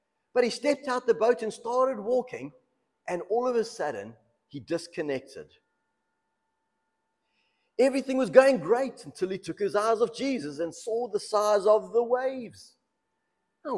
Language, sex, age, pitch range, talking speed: English, male, 50-69, 180-240 Hz, 155 wpm